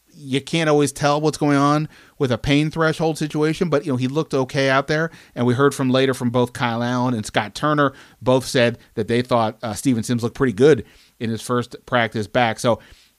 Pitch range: 115-145 Hz